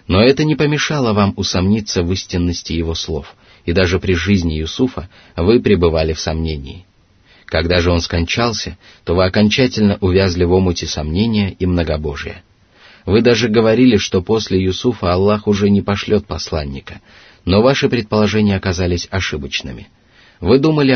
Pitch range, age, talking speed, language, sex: 85-105 Hz, 30-49, 145 wpm, Russian, male